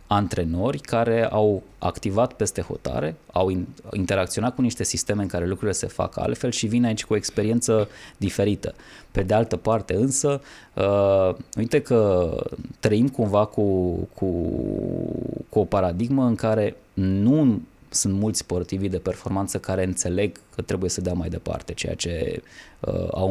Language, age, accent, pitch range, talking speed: Romanian, 20-39, native, 95-115 Hz, 145 wpm